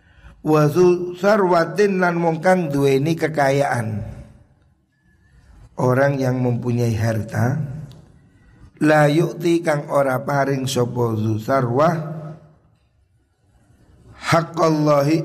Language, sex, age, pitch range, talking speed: Indonesian, male, 50-69, 115-140 Hz, 80 wpm